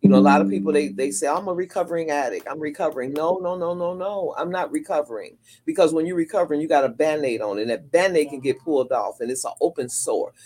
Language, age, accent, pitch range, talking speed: English, 40-59, American, 130-180 Hz, 260 wpm